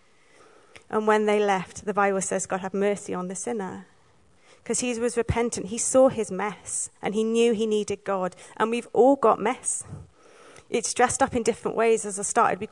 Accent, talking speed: British, 200 wpm